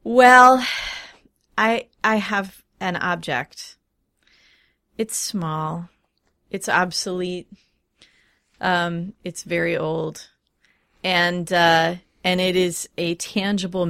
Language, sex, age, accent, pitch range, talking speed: English, female, 30-49, American, 160-190 Hz, 90 wpm